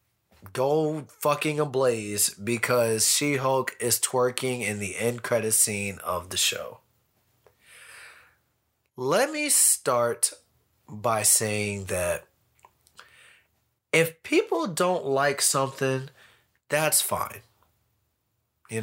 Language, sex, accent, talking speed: English, male, American, 95 wpm